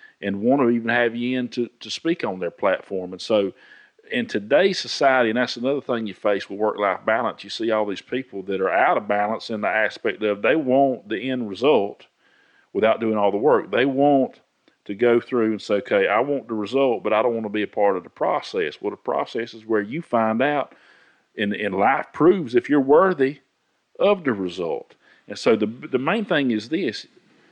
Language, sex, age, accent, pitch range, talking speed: English, male, 40-59, American, 120-180 Hz, 220 wpm